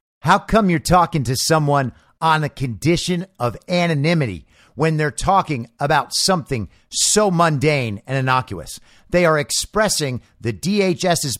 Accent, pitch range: American, 140-200 Hz